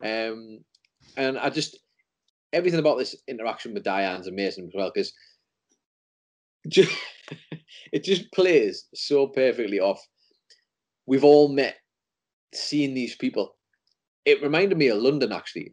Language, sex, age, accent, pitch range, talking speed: English, male, 30-49, British, 110-145 Hz, 120 wpm